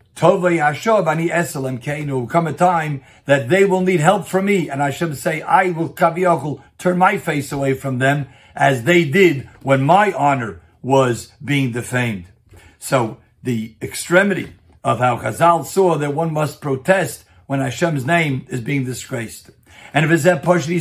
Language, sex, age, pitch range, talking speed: English, male, 50-69, 130-175 Hz, 150 wpm